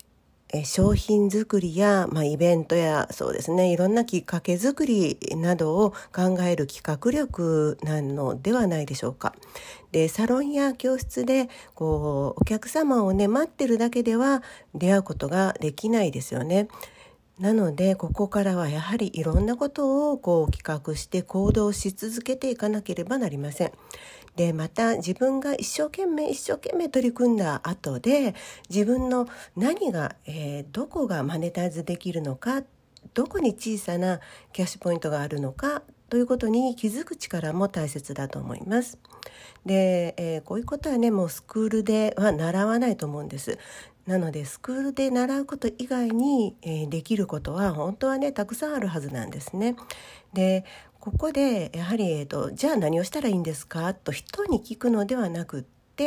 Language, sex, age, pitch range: Japanese, female, 40-59, 165-250 Hz